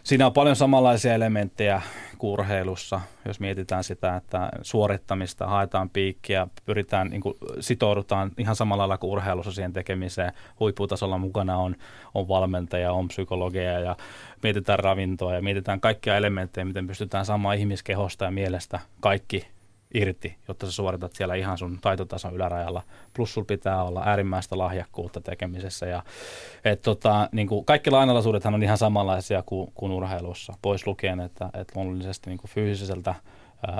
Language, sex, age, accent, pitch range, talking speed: Finnish, male, 20-39, native, 95-105 Hz, 145 wpm